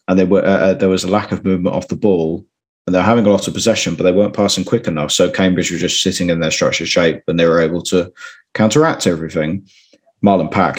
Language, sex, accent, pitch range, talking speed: English, male, British, 85-110 Hz, 245 wpm